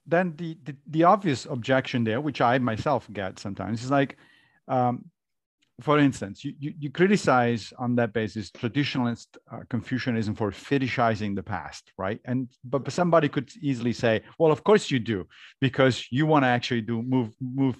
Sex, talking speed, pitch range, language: male, 170 wpm, 115-145 Hz, English